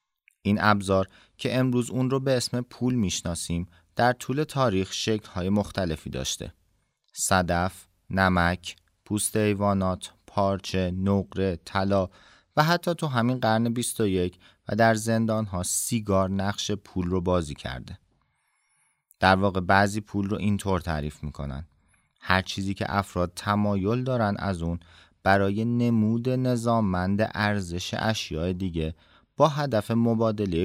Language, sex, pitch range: Persian, male, 90-115 Hz